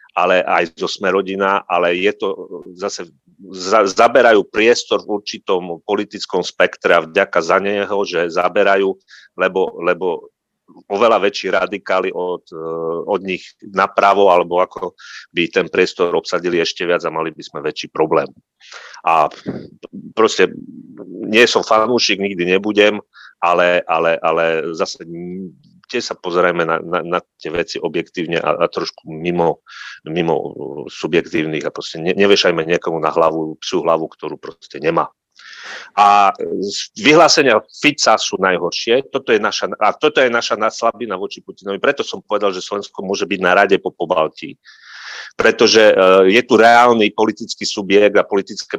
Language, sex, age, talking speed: Slovak, male, 40-59, 145 wpm